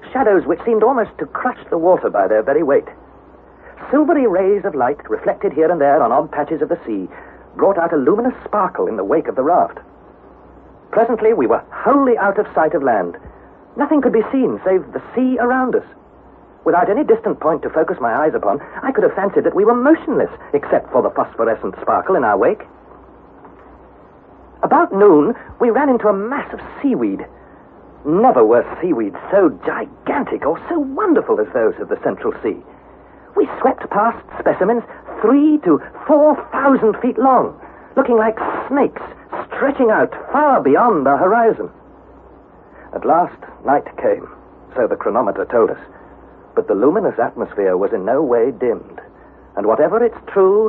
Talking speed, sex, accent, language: 170 wpm, male, British, English